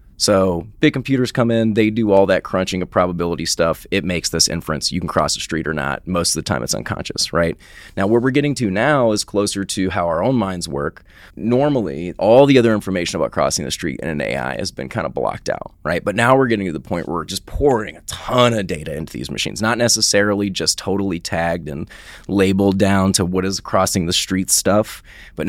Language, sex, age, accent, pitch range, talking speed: English, male, 20-39, American, 90-110 Hz, 230 wpm